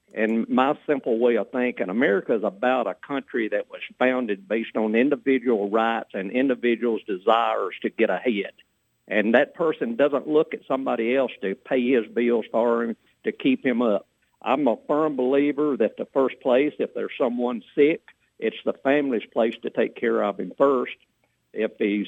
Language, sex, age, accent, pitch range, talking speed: English, male, 50-69, American, 120-150 Hz, 175 wpm